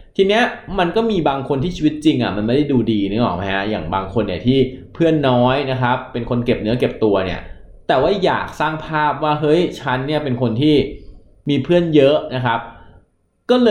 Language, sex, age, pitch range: Thai, male, 20-39, 110-145 Hz